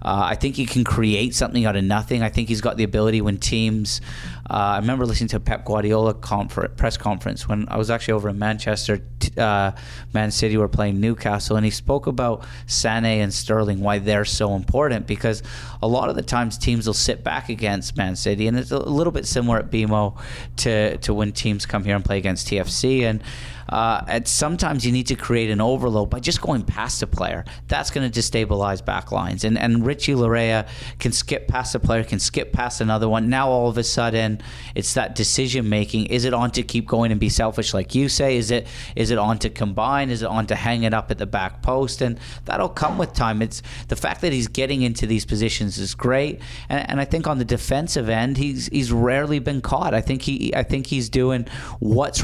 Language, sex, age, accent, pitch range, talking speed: English, male, 30-49, American, 105-125 Hz, 225 wpm